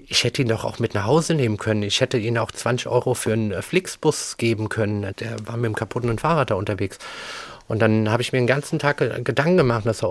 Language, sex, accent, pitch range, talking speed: German, male, German, 105-120 Hz, 245 wpm